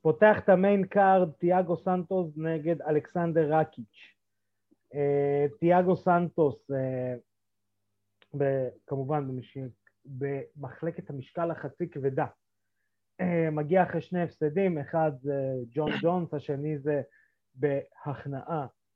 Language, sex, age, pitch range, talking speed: Hebrew, male, 30-49, 130-165 Hz, 85 wpm